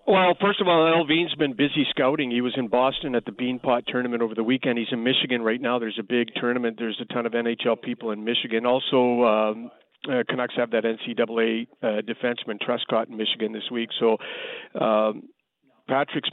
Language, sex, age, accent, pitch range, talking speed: English, male, 50-69, American, 120-150 Hz, 195 wpm